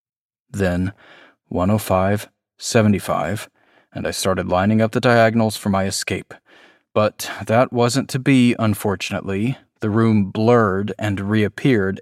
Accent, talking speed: American, 135 wpm